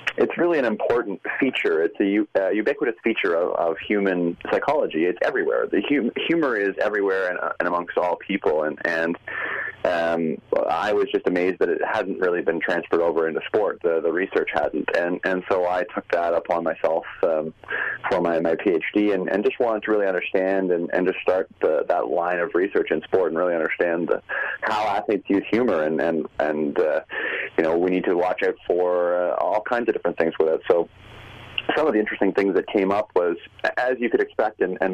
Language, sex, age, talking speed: English, male, 30-49, 210 wpm